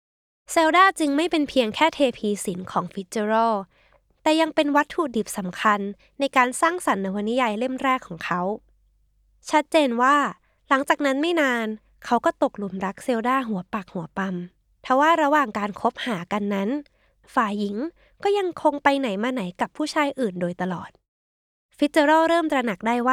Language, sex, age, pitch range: Thai, female, 20-39, 205-290 Hz